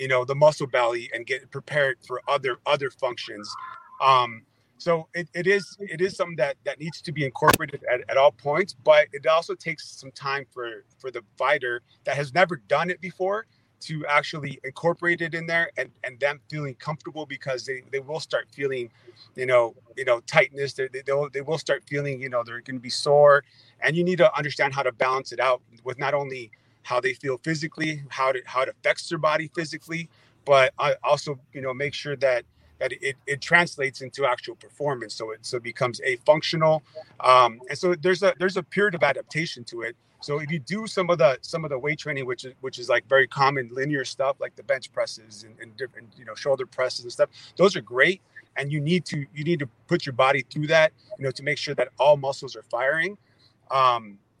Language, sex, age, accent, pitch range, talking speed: English, male, 30-49, American, 130-165 Hz, 220 wpm